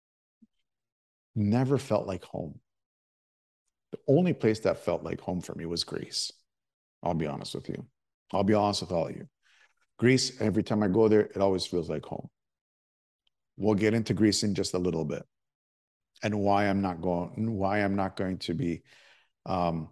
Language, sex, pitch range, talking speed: English, male, 90-110 Hz, 180 wpm